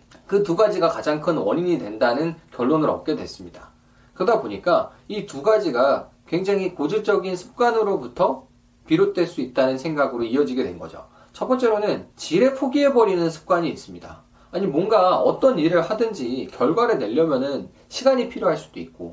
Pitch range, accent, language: 160-230 Hz, native, Korean